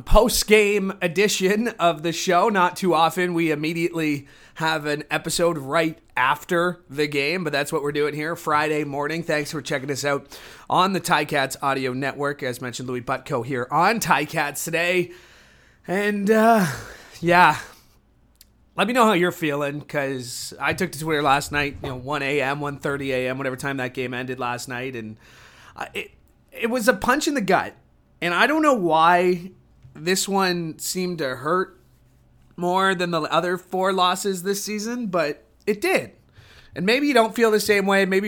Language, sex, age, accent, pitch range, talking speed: English, male, 30-49, American, 145-205 Hz, 175 wpm